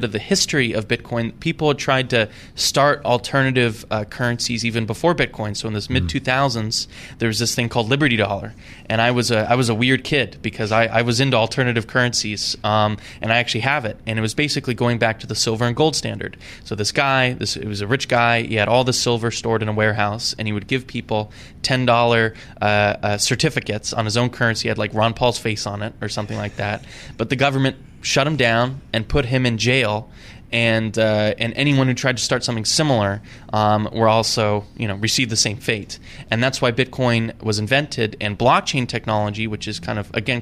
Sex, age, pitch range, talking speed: male, 20-39, 110-130 Hz, 215 wpm